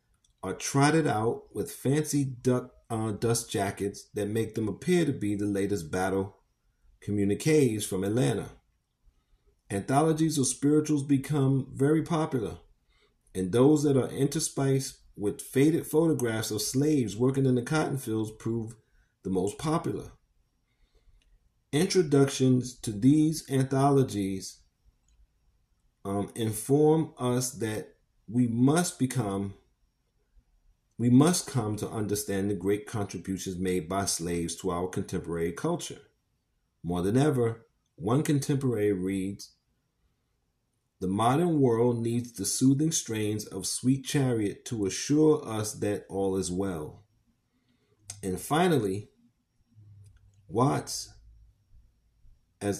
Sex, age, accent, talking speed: male, 40-59, American, 115 wpm